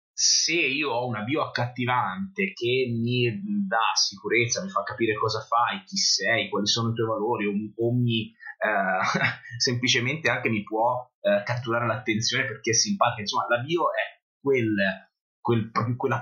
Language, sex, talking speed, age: Italian, male, 165 wpm, 30-49